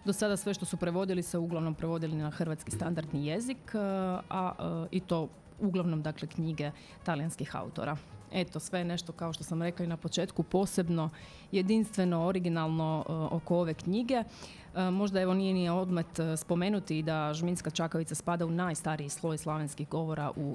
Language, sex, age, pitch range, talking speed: Croatian, female, 30-49, 160-190 Hz, 165 wpm